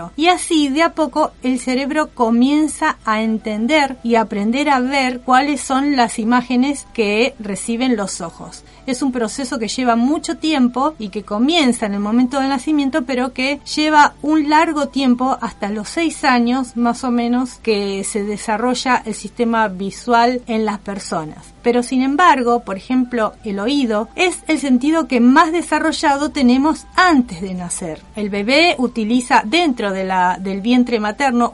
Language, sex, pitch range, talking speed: Spanish, female, 210-275 Hz, 160 wpm